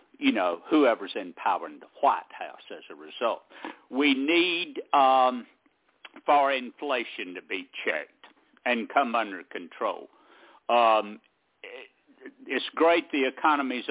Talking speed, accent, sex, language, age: 125 wpm, American, male, English, 60-79